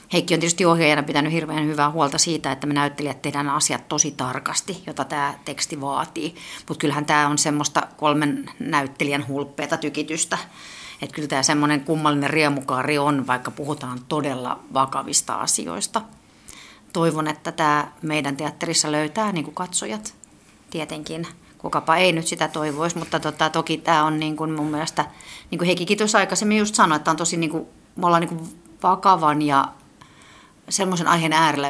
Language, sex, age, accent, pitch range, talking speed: Finnish, female, 40-59, native, 145-165 Hz, 160 wpm